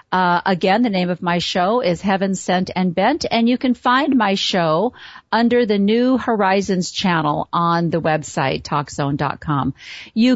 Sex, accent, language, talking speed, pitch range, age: female, American, English, 160 wpm, 185-245 Hz, 50-69